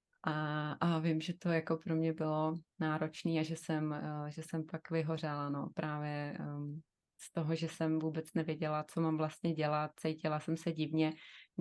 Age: 20-39